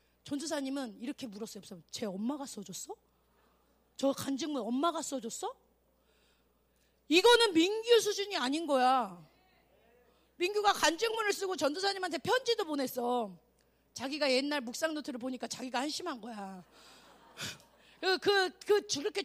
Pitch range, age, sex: 265-385 Hz, 30-49, female